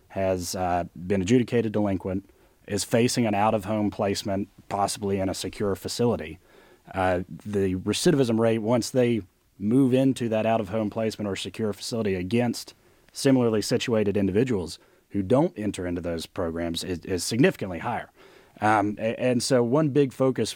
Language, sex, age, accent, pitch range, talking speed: English, male, 30-49, American, 95-115 Hz, 140 wpm